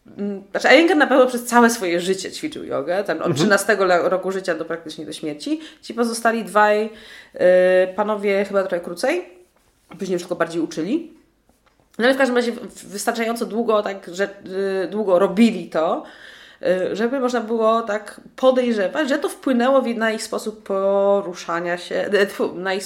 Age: 20-39